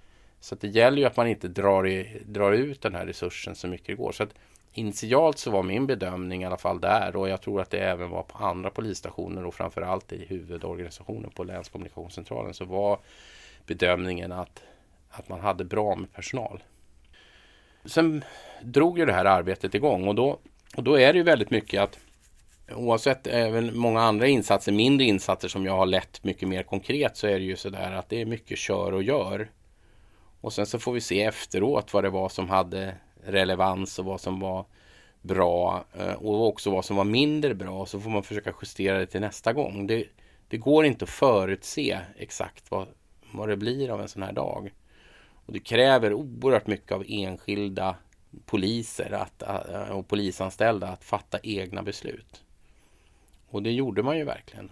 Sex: male